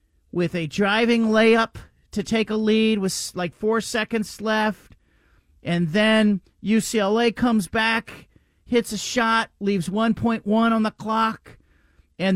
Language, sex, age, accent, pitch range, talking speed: English, male, 40-59, American, 150-215 Hz, 130 wpm